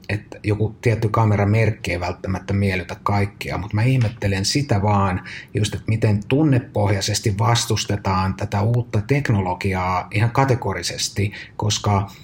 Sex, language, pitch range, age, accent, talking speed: male, Finnish, 100-110 Hz, 30-49, native, 120 wpm